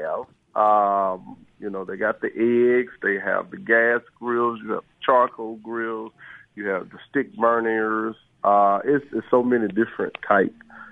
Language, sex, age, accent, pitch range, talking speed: English, male, 50-69, American, 95-120 Hz, 160 wpm